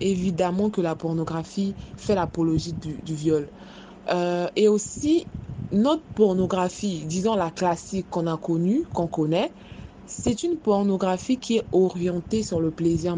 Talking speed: 140 wpm